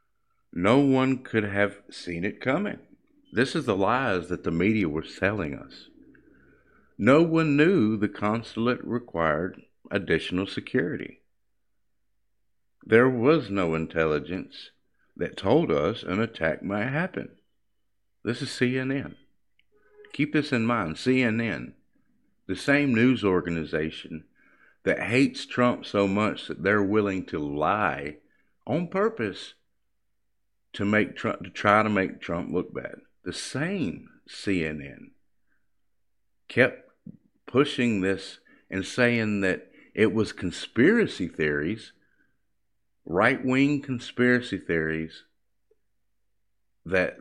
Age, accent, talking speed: 50-69, American, 110 wpm